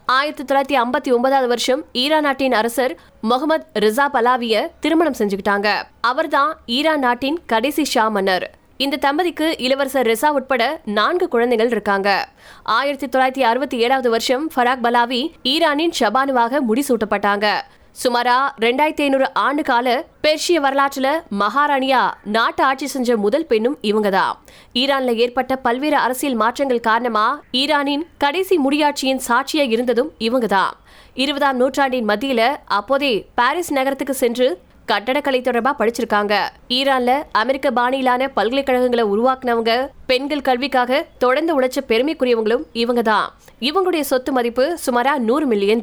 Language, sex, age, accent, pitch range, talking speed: Tamil, female, 20-39, native, 235-280 Hz, 60 wpm